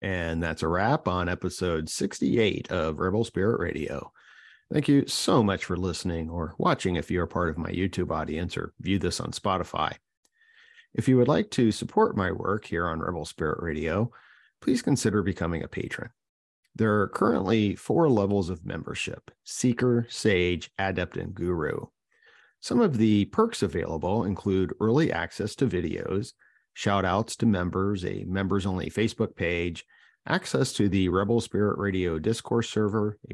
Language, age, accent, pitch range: English, 40-59, American, 85-110 Hz